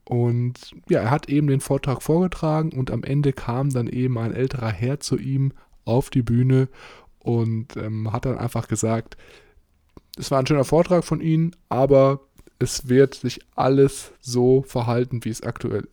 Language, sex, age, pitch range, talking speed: German, male, 20-39, 110-130 Hz, 170 wpm